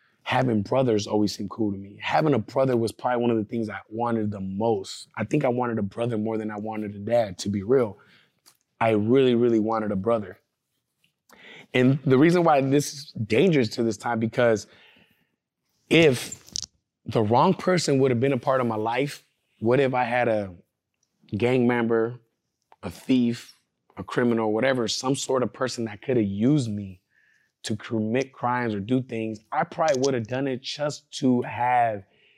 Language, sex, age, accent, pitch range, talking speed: English, male, 20-39, American, 110-130 Hz, 185 wpm